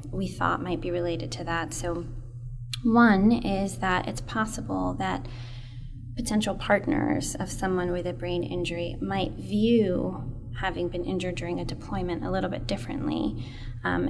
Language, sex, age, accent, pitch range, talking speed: English, female, 20-39, American, 115-175 Hz, 150 wpm